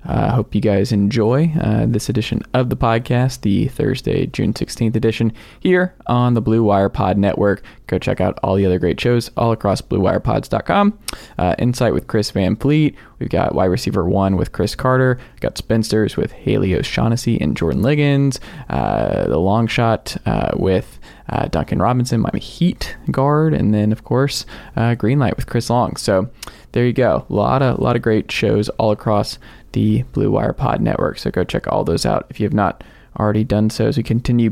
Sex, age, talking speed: male, 20-39, 195 wpm